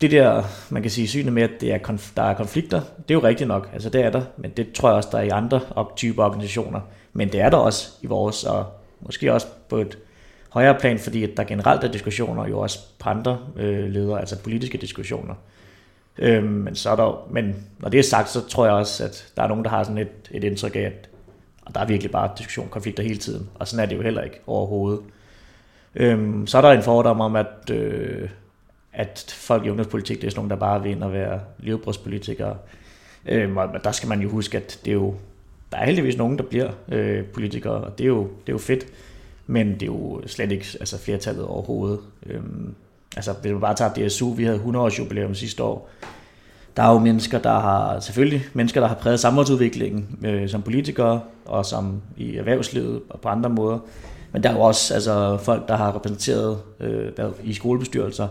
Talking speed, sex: 215 wpm, male